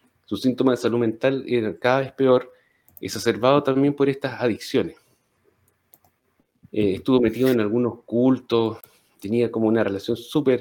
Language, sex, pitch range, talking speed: Spanish, male, 110-130 Hz, 140 wpm